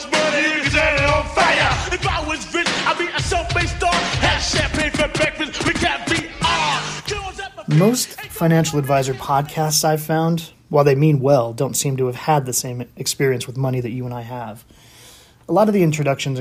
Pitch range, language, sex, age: 125-155 Hz, English, male, 30-49